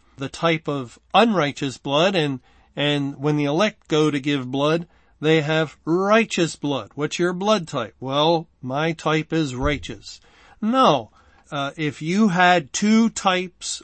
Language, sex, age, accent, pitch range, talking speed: English, male, 50-69, American, 140-165 Hz, 145 wpm